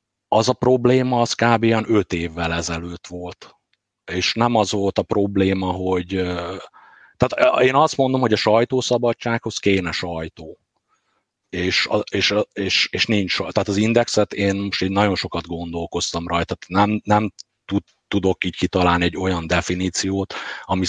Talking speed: 140 wpm